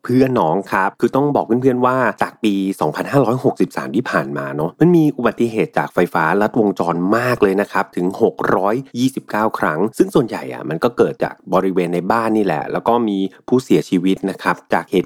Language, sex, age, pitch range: Thai, male, 30-49, 90-125 Hz